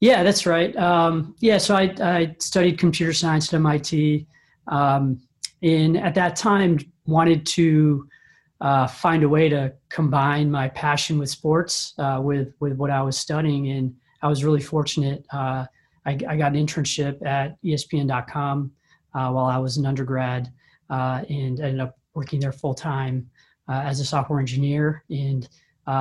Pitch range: 135-150 Hz